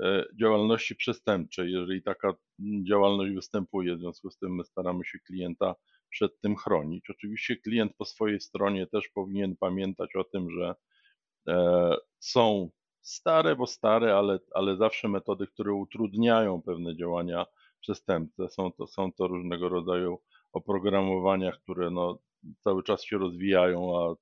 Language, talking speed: Polish, 140 wpm